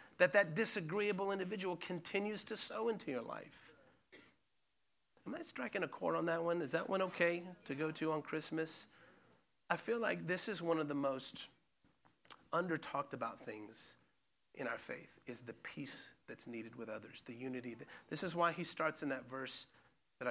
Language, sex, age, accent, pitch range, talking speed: English, male, 30-49, American, 135-190 Hz, 175 wpm